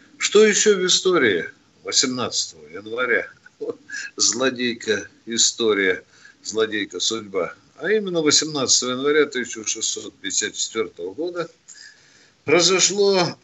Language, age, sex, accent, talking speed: Russian, 50-69, male, native, 75 wpm